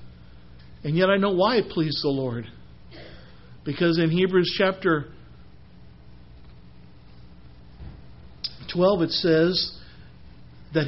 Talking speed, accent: 95 wpm, American